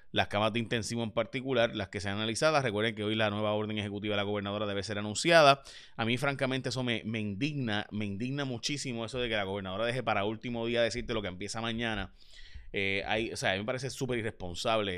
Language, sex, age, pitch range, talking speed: Spanish, male, 30-49, 105-130 Hz, 230 wpm